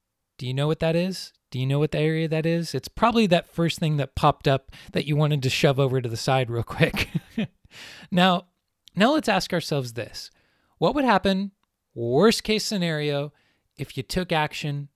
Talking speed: 195 wpm